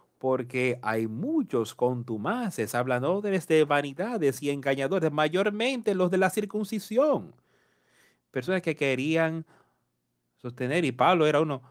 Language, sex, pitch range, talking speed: Spanish, male, 120-170 Hz, 115 wpm